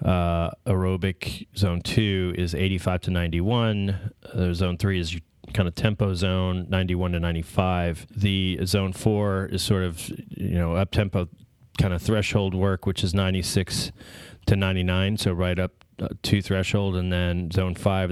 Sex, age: male, 30-49